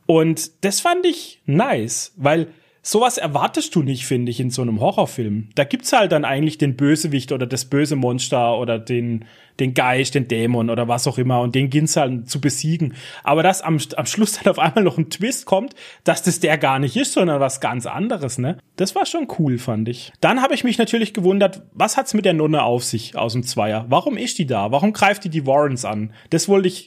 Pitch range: 130-195 Hz